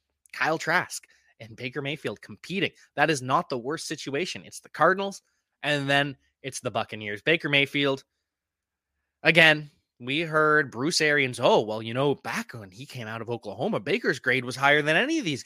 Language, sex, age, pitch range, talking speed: English, male, 20-39, 115-150 Hz, 180 wpm